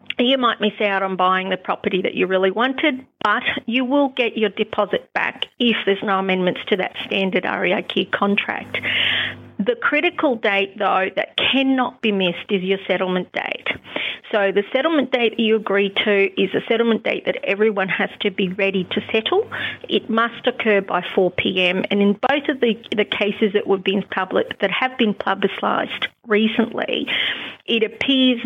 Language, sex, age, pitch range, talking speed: English, female, 40-59, 195-230 Hz, 165 wpm